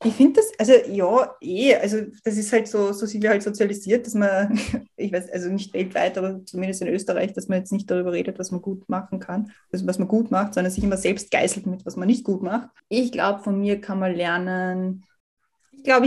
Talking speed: 230 wpm